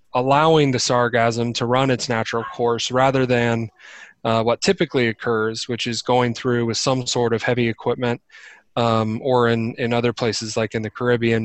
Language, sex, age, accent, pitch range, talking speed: English, male, 20-39, American, 115-130 Hz, 180 wpm